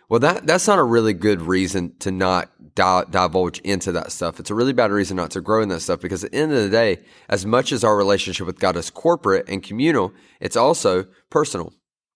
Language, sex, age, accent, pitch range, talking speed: English, male, 30-49, American, 95-105 Hz, 230 wpm